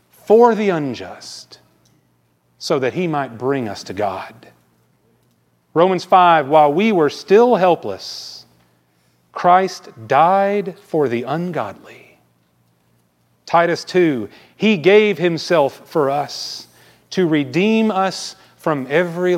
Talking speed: 110 wpm